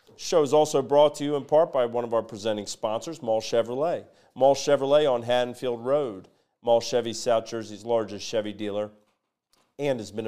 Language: English